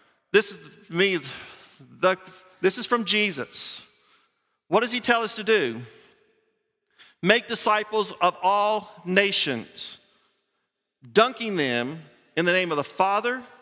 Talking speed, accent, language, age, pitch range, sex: 120 wpm, American, English, 50-69, 185-235 Hz, male